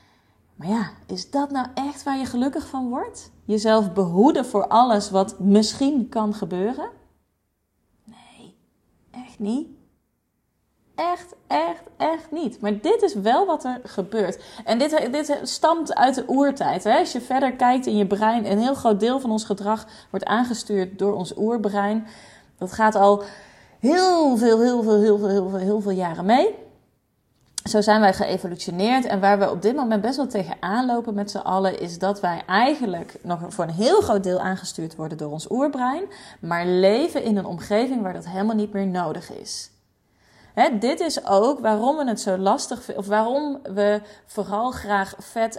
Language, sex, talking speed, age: Dutch, female, 175 wpm, 30-49